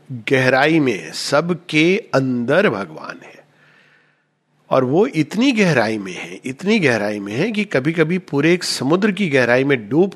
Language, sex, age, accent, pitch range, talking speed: Hindi, male, 50-69, native, 130-180 Hz, 155 wpm